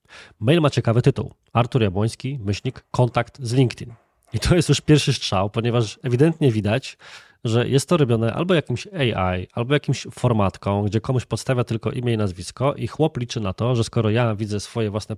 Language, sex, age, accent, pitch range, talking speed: Polish, male, 20-39, native, 110-135 Hz, 185 wpm